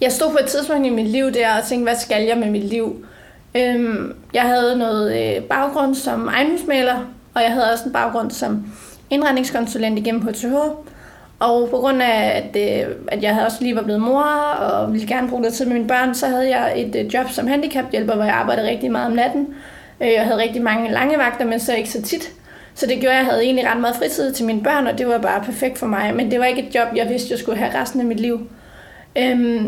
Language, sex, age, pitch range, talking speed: Danish, female, 30-49, 230-270 Hz, 230 wpm